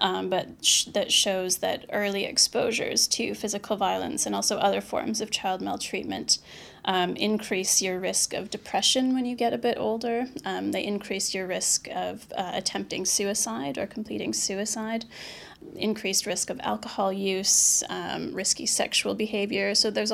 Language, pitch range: English, 195-230 Hz